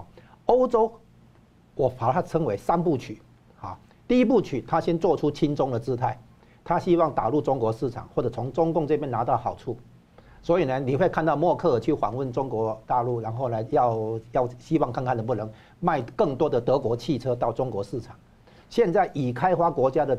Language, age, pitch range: Chinese, 50-69, 120-155 Hz